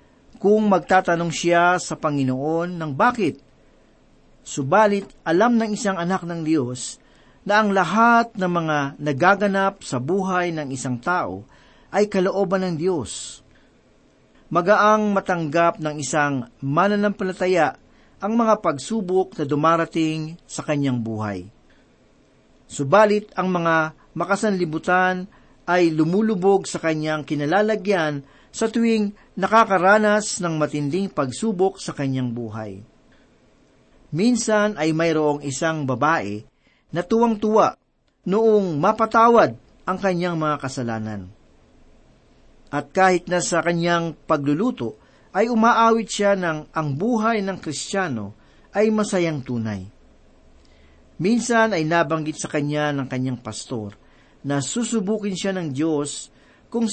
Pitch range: 150-205 Hz